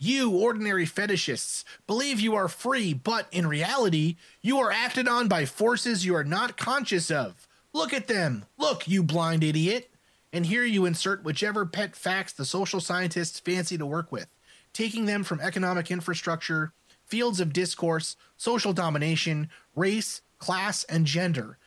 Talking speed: 155 wpm